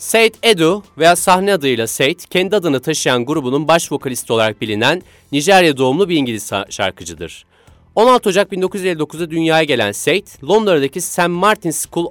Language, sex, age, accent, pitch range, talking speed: Turkish, male, 30-49, native, 115-185 Hz, 145 wpm